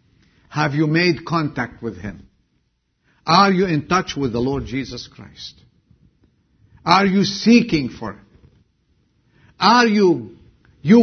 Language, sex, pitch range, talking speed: English, male, 115-185 Hz, 125 wpm